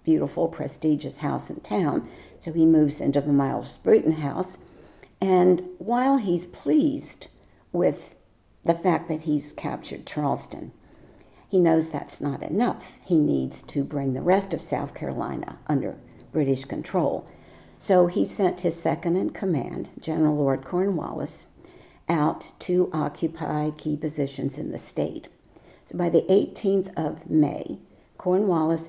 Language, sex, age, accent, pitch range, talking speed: English, female, 60-79, American, 150-180 Hz, 135 wpm